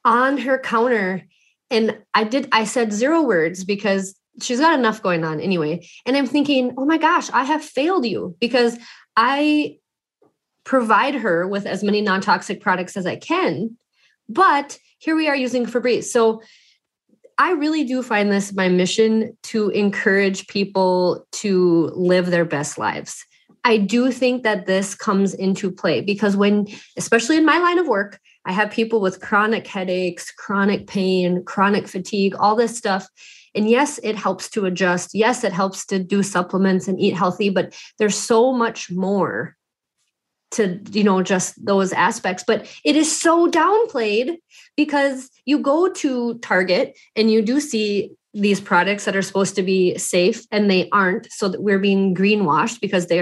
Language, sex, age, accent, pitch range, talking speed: English, female, 30-49, American, 190-255 Hz, 170 wpm